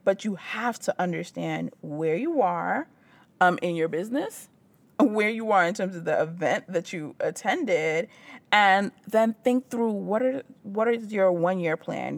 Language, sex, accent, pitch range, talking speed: English, female, American, 170-210 Hz, 165 wpm